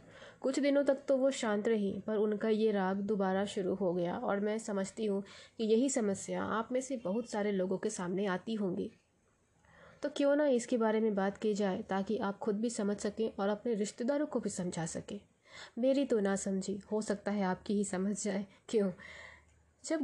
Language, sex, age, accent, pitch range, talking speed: Hindi, female, 20-39, native, 200-245 Hz, 200 wpm